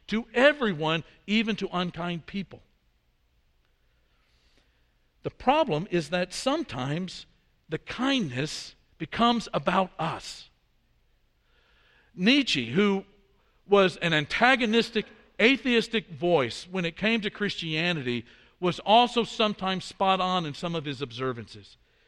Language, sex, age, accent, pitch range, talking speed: English, male, 60-79, American, 160-220 Hz, 105 wpm